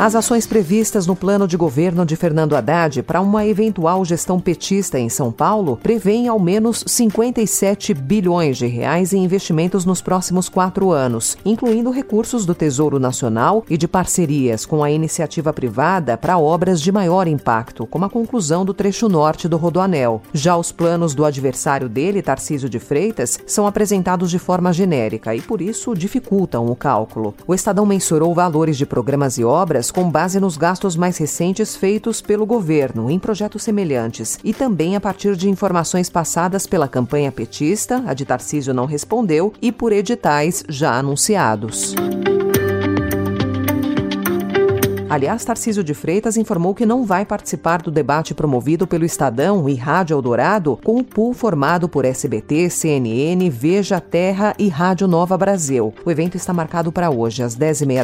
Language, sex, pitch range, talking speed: Portuguese, female, 140-200 Hz, 160 wpm